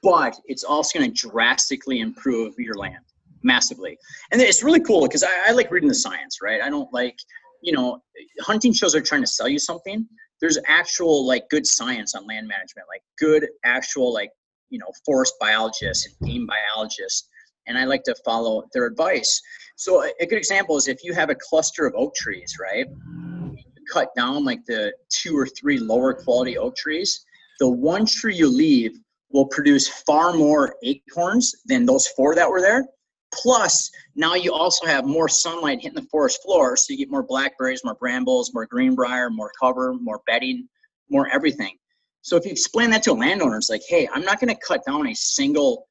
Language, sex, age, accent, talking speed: English, male, 30-49, American, 190 wpm